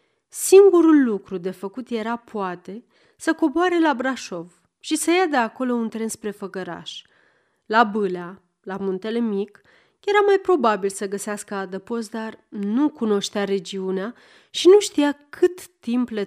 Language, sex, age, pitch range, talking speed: Romanian, female, 30-49, 195-285 Hz, 150 wpm